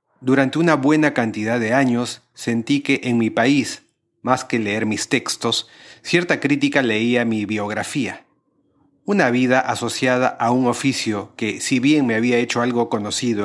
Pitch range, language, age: 115-135 Hz, Spanish, 30-49